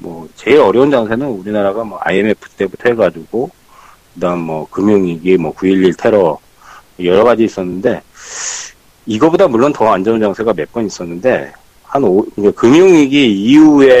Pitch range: 95-135 Hz